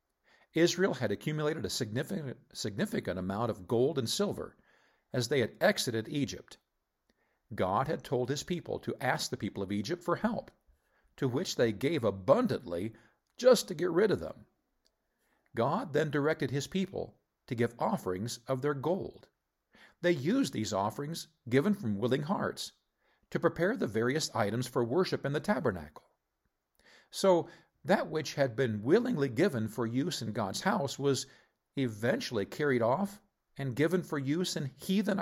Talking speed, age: 155 wpm, 50-69